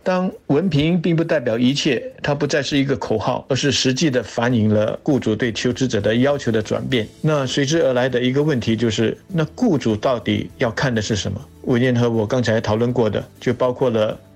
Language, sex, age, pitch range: Chinese, male, 50-69, 110-145 Hz